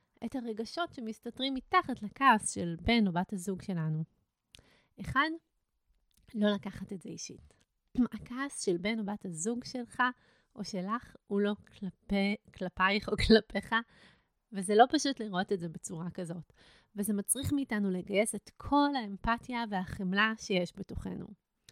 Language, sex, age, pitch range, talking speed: Hebrew, female, 30-49, 190-250 Hz, 140 wpm